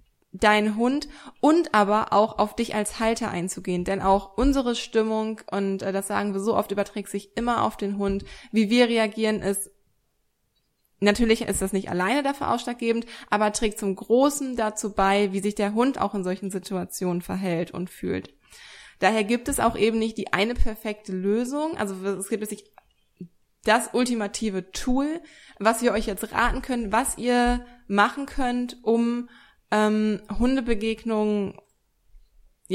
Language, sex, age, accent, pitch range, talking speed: German, female, 20-39, German, 200-235 Hz, 155 wpm